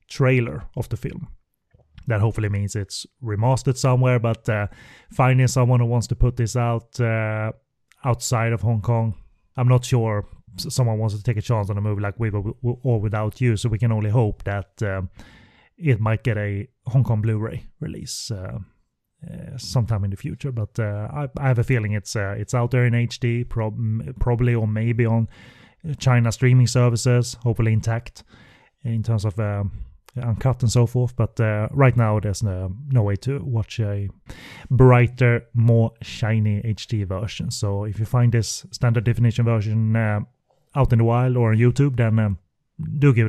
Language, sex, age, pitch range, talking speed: English, male, 30-49, 110-125 Hz, 180 wpm